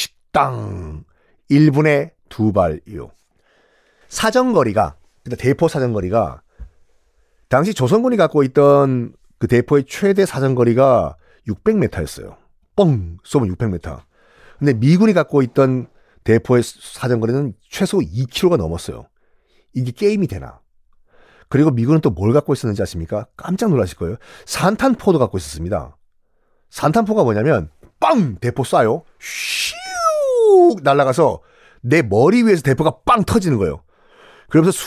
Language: Korean